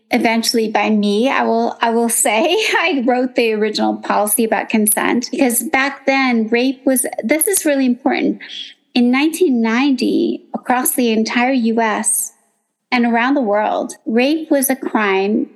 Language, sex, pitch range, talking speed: English, female, 225-280 Hz, 145 wpm